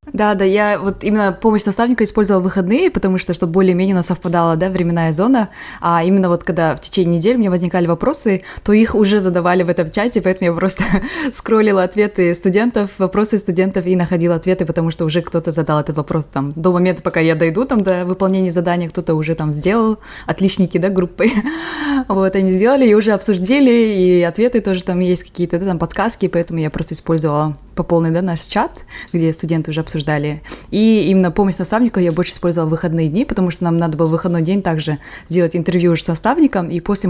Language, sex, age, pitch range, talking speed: Russian, female, 20-39, 165-200 Hz, 195 wpm